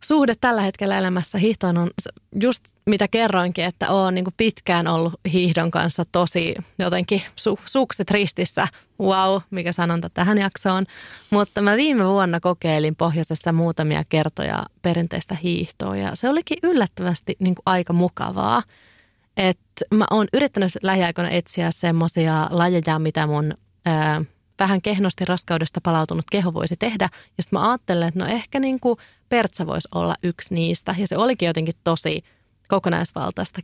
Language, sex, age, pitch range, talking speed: Finnish, female, 30-49, 165-200 Hz, 130 wpm